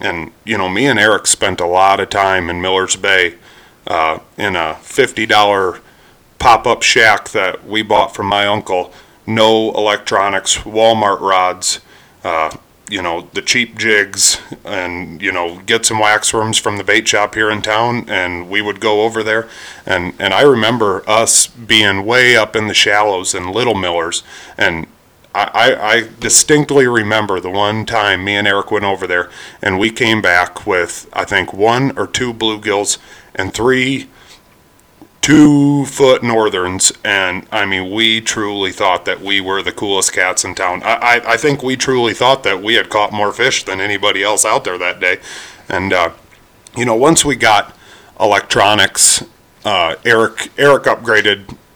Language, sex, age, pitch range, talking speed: English, male, 30-49, 95-115 Hz, 170 wpm